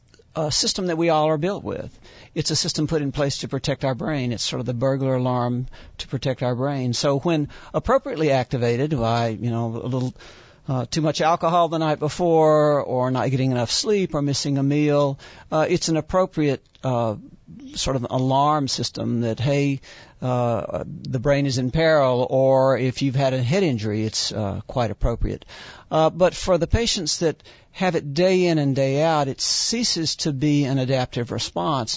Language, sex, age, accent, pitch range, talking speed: English, male, 60-79, American, 125-155 Hz, 190 wpm